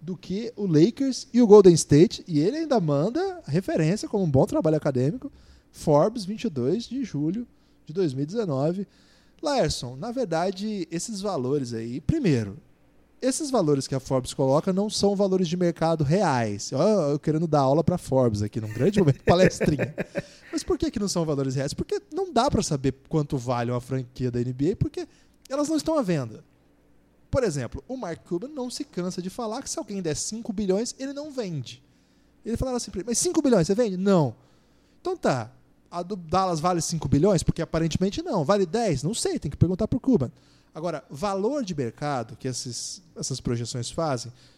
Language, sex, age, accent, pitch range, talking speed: Portuguese, male, 20-39, Brazilian, 140-215 Hz, 190 wpm